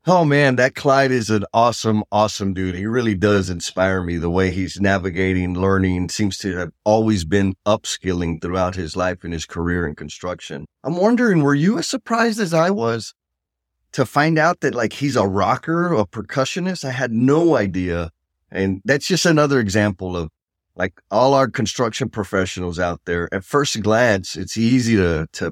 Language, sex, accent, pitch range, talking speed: English, male, American, 95-135 Hz, 180 wpm